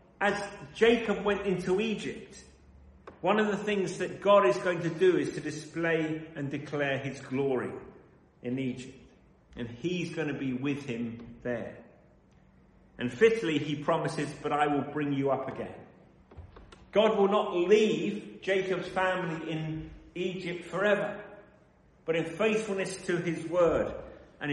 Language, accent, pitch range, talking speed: English, British, 115-175 Hz, 145 wpm